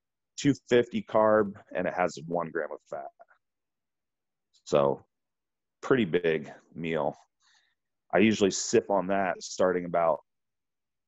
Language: English